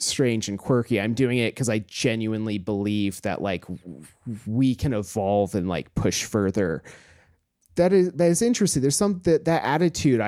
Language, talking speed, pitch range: English, 170 wpm, 100-135 Hz